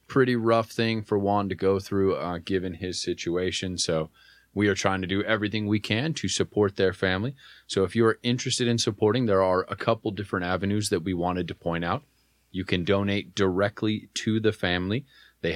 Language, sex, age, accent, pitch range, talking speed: English, male, 30-49, American, 90-105 Hz, 195 wpm